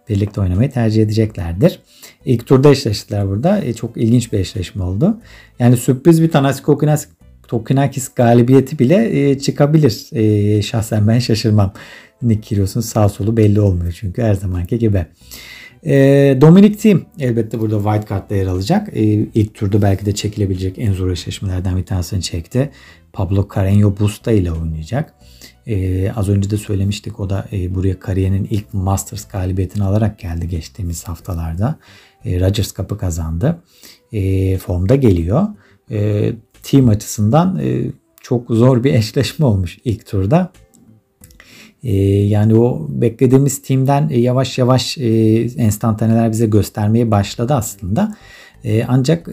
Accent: native